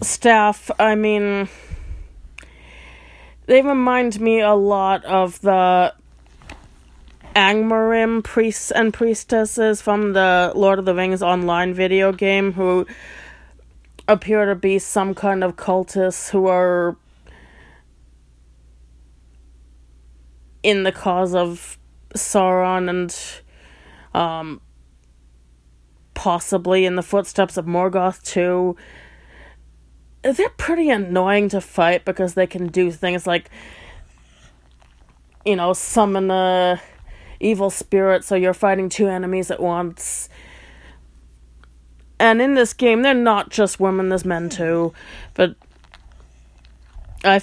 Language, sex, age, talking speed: English, female, 20-39, 105 wpm